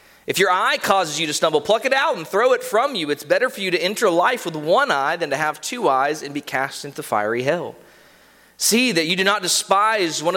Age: 30-49